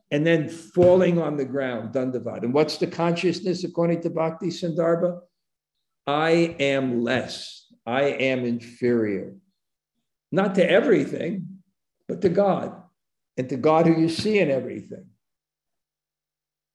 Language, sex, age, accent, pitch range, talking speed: English, male, 60-79, American, 130-160 Hz, 125 wpm